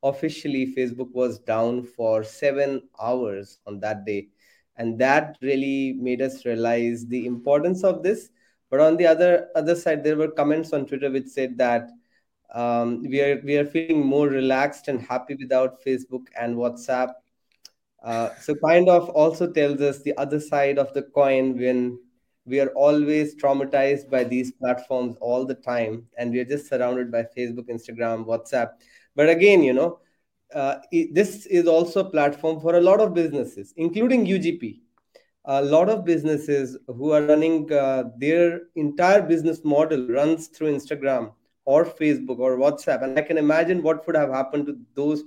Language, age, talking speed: English, 20-39, 165 wpm